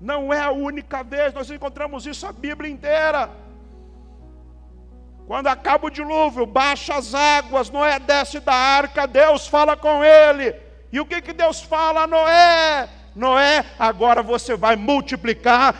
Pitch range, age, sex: 260-315 Hz, 50-69, male